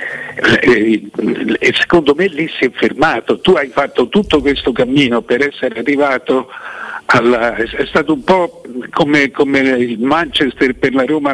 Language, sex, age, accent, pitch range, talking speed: Italian, male, 60-79, native, 125-175 Hz, 150 wpm